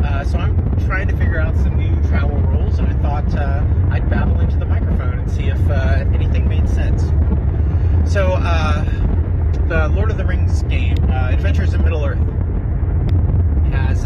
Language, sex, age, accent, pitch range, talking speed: English, male, 30-49, American, 80-90 Hz, 170 wpm